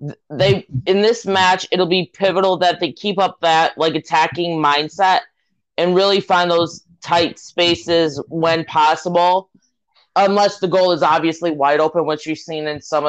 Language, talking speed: English, 160 wpm